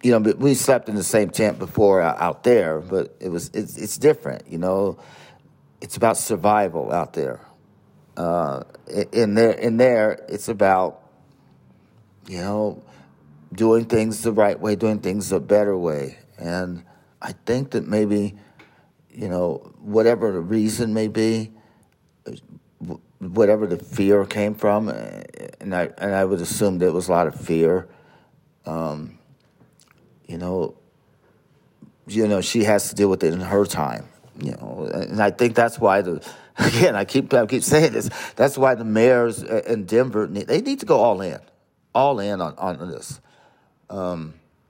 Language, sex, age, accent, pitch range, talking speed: English, male, 50-69, American, 95-115 Hz, 160 wpm